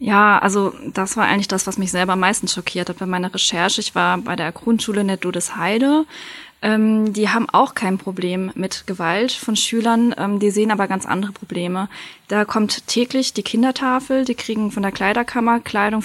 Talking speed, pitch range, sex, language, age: 195 wpm, 210-245 Hz, female, German, 20-39